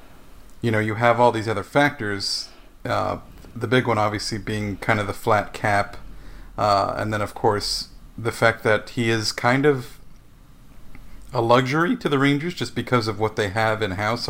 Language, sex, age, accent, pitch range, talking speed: English, male, 40-59, American, 105-120 Hz, 180 wpm